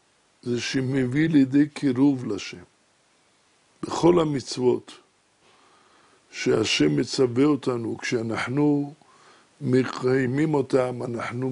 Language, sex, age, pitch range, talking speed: French, male, 60-79, 120-145 Hz, 75 wpm